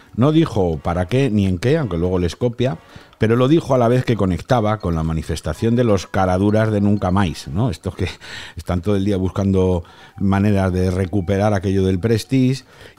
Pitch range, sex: 90-120 Hz, male